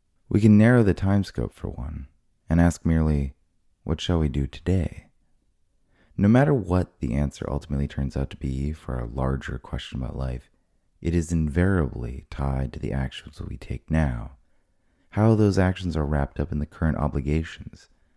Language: English